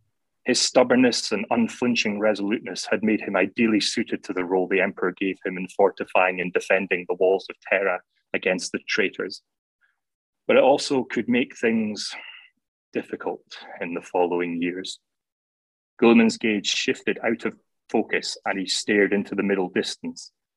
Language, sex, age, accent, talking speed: English, male, 30-49, British, 150 wpm